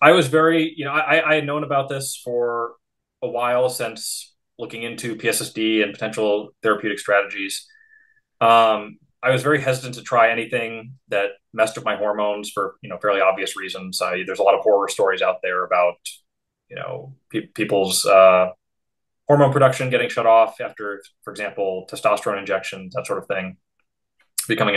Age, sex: 20-39, male